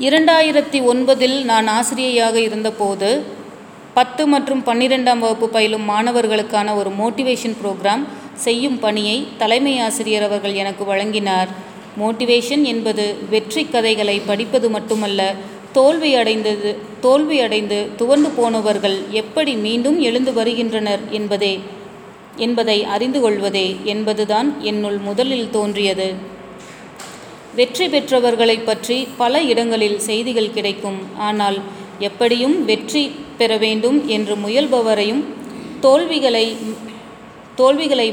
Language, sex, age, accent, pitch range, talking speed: Tamil, female, 30-49, native, 210-250 Hz, 95 wpm